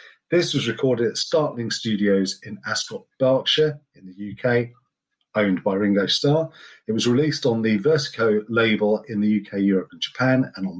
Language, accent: English, British